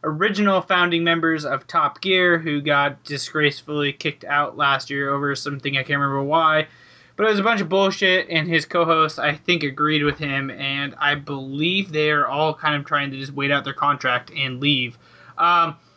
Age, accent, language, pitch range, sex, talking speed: 20-39, American, English, 145-180 Hz, male, 195 wpm